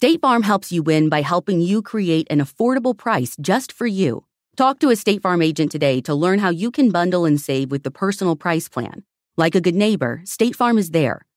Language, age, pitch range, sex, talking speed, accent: English, 30-49, 135-180 Hz, female, 225 wpm, American